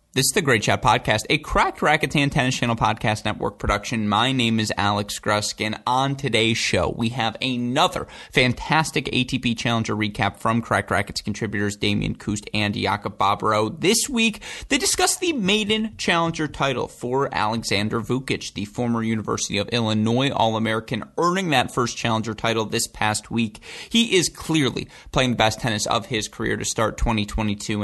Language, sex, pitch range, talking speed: English, male, 110-135 Hz, 165 wpm